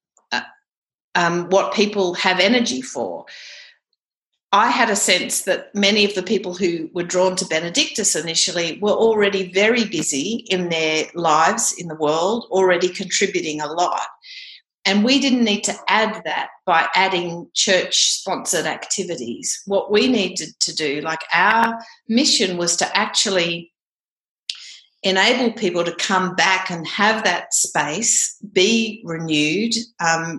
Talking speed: 135 wpm